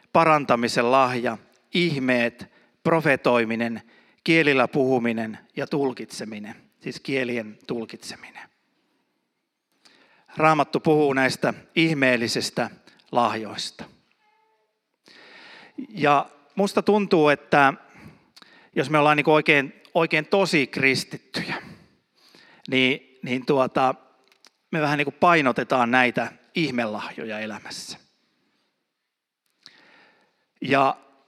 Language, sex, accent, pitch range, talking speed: Finnish, male, native, 125-165 Hz, 70 wpm